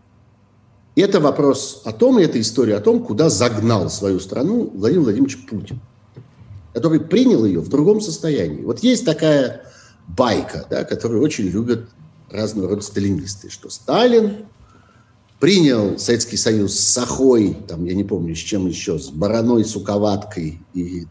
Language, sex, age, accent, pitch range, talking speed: Russian, male, 50-69, native, 100-130 Hz, 140 wpm